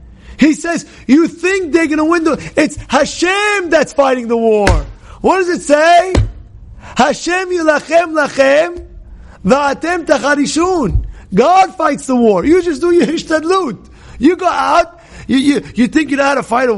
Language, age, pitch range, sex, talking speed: English, 30-49, 235-335 Hz, male, 165 wpm